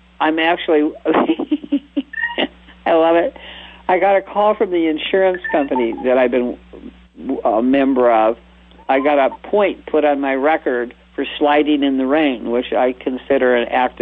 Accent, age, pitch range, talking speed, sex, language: American, 50-69, 120-150 Hz, 160 wpm, male, English